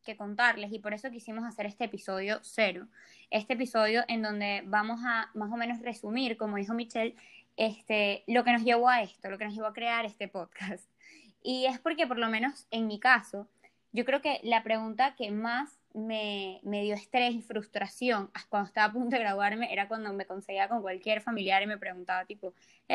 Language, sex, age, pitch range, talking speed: Spanish, female, 20-39, 210-250 Hz, 200 wpm